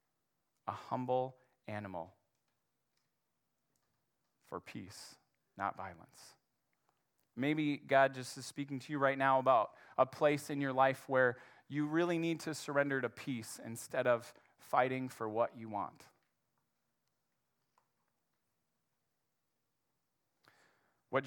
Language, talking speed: English, 105 wpm